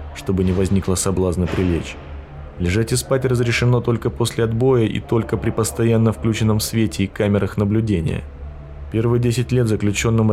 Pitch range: 95-120 Hz